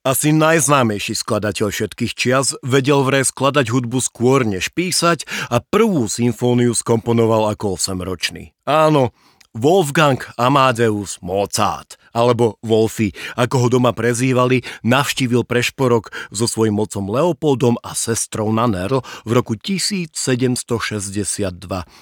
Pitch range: 110-140 Hz